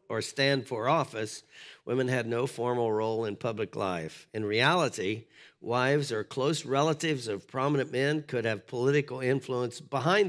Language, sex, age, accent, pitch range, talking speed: English, male, 50-69, American, 105-125 Hz, 150 wpm